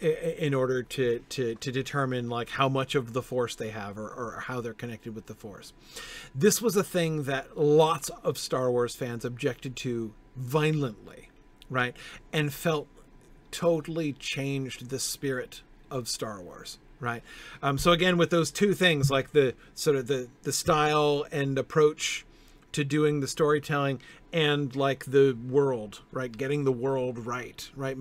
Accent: American